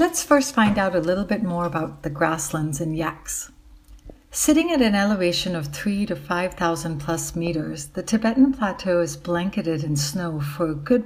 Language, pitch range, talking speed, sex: English, 165-210 Hz, 185 wpm, female